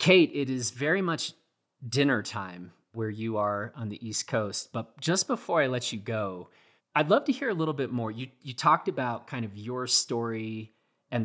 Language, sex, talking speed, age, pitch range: English, male, 205 wpm, 30-49, 110-140 Hz